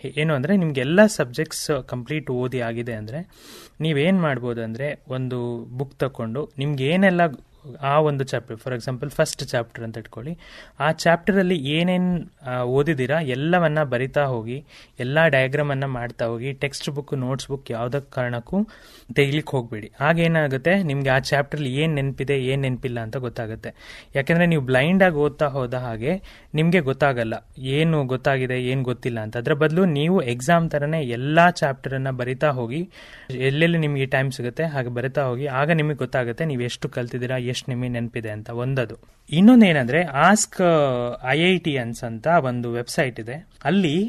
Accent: native